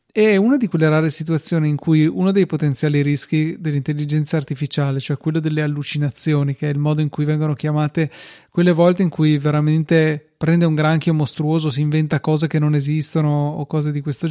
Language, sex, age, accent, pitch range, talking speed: Italian, male, 20-39, native, 145-160 Hz, 190 wpm